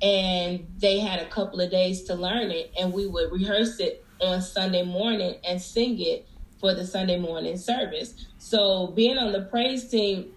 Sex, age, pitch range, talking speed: female, 20-39, 185-225 Hz, 185 wpm